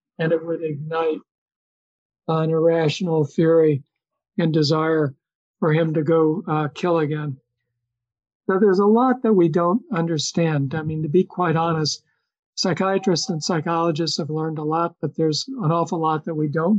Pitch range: 160-180 Hz